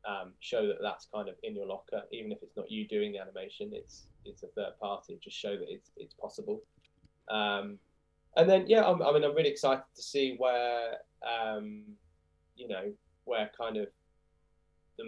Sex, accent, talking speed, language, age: male, British, 185 wpm, English, 20-39